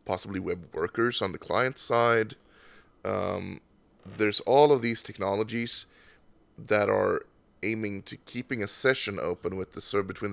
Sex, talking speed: male, 145 wpm